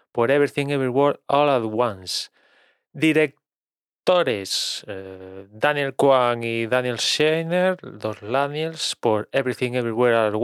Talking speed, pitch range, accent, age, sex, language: 115 wpm, 115-150 Hz, Spanish, 20-39, male, Spanish